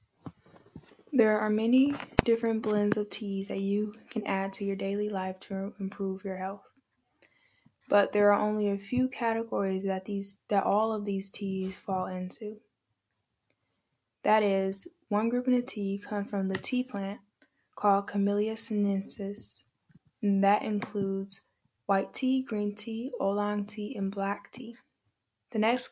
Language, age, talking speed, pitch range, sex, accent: English, 10-29, 150 wpm, 195-220 Hz, female, American